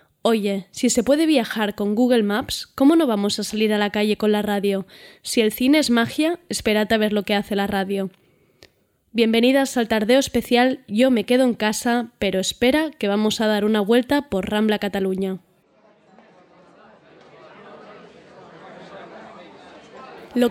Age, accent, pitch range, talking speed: 20-39, Spanish, 210-245 Hz, 155 wpm